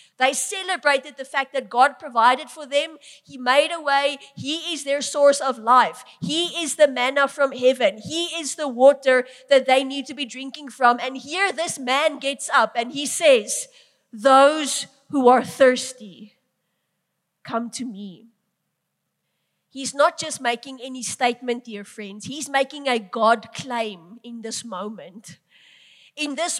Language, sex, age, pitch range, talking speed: English, female, 30-49, 235-290 Hz, 160 wpm